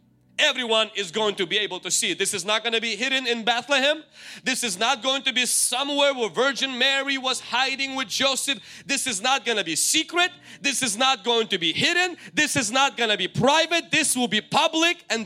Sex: male